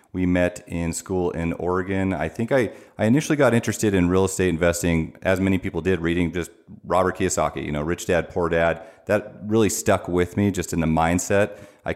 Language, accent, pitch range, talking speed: English, American, 80-95 Hz, 205 wpm